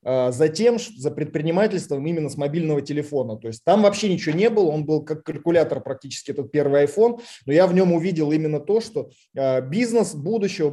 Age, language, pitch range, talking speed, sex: 20-39, Russian, 140-170 Hz, 180 wpm, male